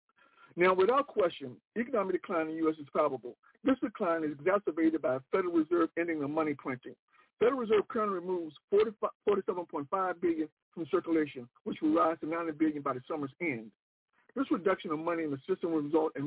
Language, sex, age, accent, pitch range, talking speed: English, male, 60-79, American, 150-220 Hz, 185 wpm